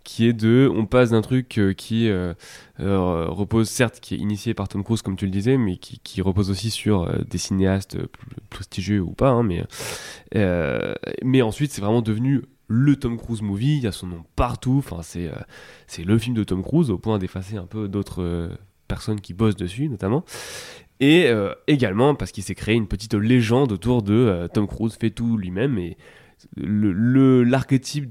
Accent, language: French, French